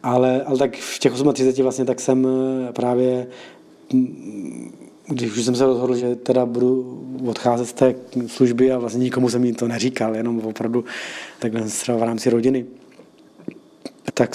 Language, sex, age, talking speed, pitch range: Czech, male, 20-39, 155 wpm, 115-125 Hz